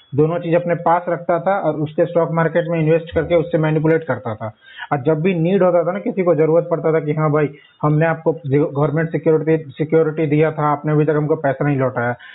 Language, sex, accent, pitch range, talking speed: Hindi, male, native, 155-175 Hz, 225 wpm